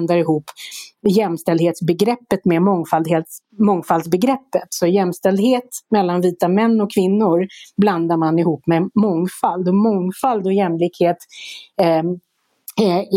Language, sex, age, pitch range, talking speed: Swedish, female, 30-49, 165-205 Hz, 100 wpm